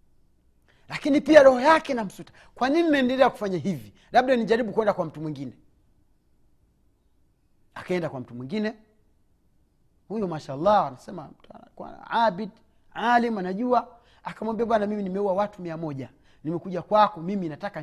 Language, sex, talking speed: Swahili, male, 130 wpm